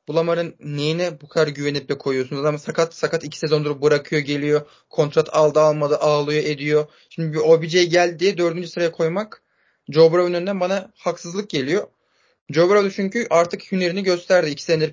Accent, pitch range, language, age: native, 150-185 Hz, Turkish, 30-49